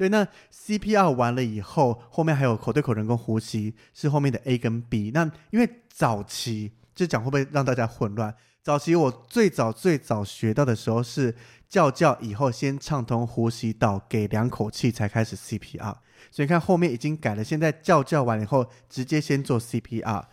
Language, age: Chinese, 20-39